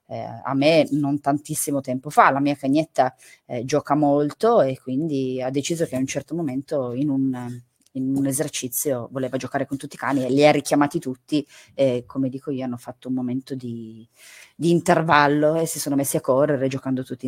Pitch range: 135-170 Hz